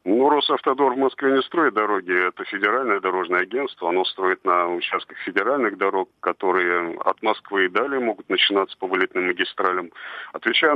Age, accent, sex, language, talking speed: 40-59, native, male, Russian, 155 wpm